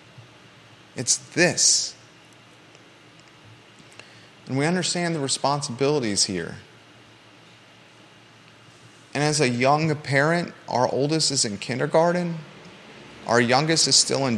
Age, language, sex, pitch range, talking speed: 30-49, English, male, 125-160 Hz, 95 wpm